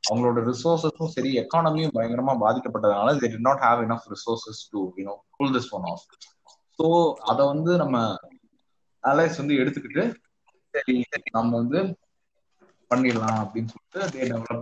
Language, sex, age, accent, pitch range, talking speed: Tamil, male, 20-39, native, 115-170 Hz, 45 wpm